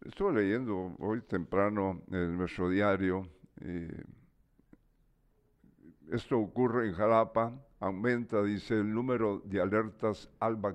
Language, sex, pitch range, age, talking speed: Spanish, male, 95-125 Hz, 50-69, 100 wpm